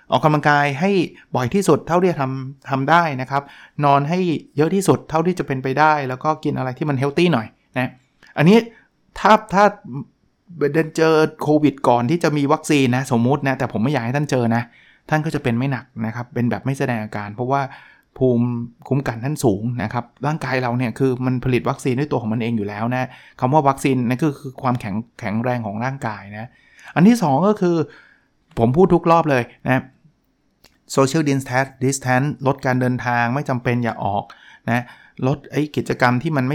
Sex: male